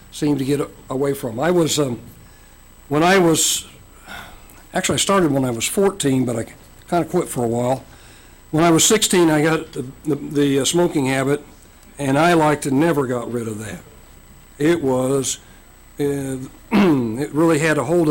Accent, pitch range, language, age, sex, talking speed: American, 140-185 Hz, English, 60-79, male, 180 wpm